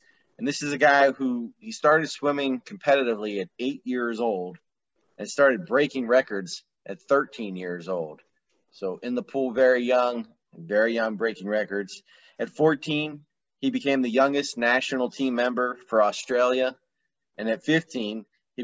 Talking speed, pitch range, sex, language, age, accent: 150 wpm, 110-135 Hz, male, English, 30-49, American